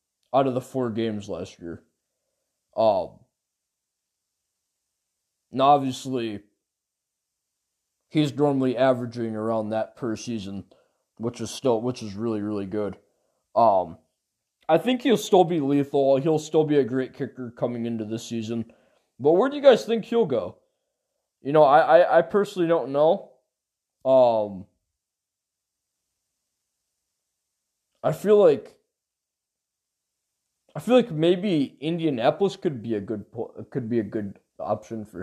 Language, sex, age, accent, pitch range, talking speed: English, male, 20-39, American, 115-155 Hz, 135 wpm